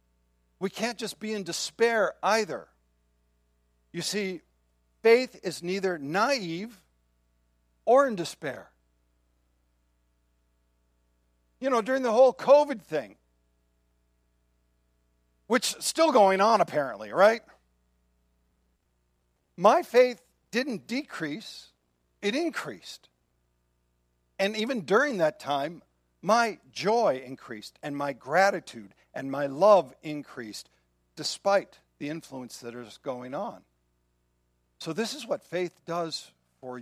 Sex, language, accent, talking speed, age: male, English, American, 105 wpm, 50-69